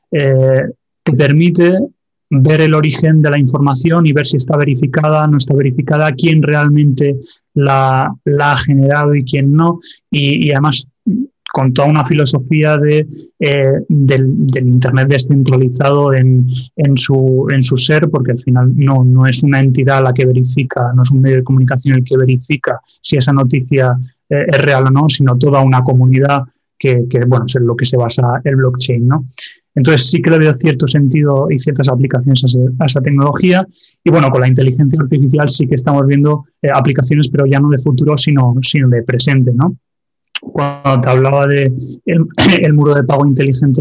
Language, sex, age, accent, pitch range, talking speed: Spanish, male, 30-49, Spanish, 130-150 Hz, 180 wpm